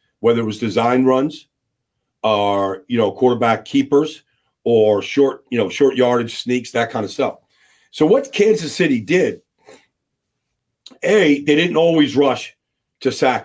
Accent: American